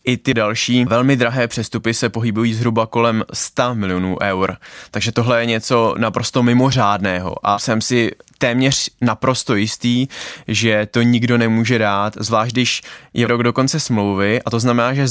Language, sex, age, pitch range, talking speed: Czech, male, 20-39, 110-125 Hz, 165 wpm